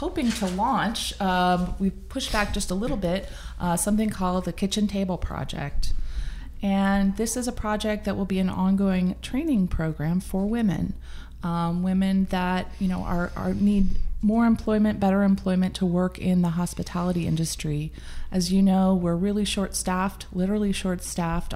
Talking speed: 160 wpm